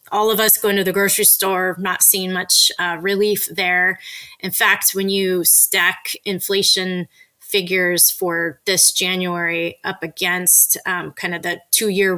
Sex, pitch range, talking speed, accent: female, 175-205 Hz, 155 wpm, American